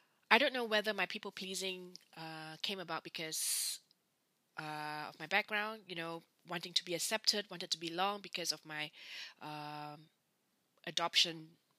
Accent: Malaysian